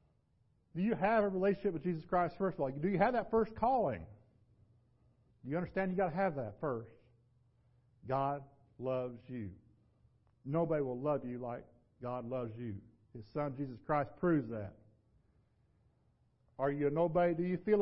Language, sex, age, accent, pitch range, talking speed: English, male, 50-69, American, 115-150 Hz, 170 wpm